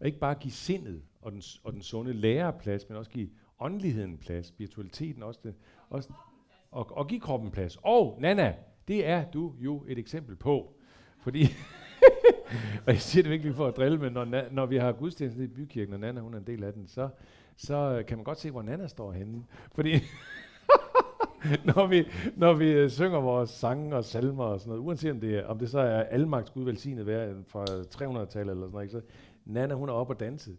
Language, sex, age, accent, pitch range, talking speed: Danish, male, 50-69, native, 105-145 Hz, 220 wpm